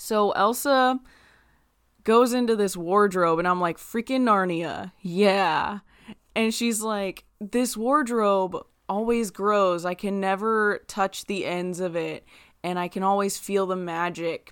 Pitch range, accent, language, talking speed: 175-220 Hz, American, English, 140 wpm